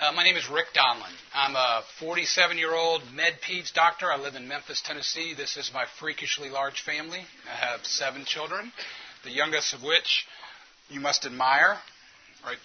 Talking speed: 170 wpm